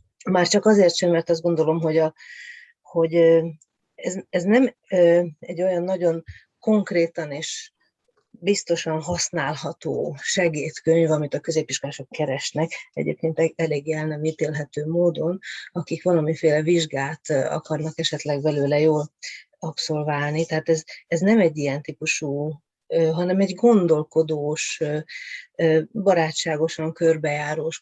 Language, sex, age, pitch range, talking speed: Hungarian, female, 30-49, 155-180 Hz, 110 wpm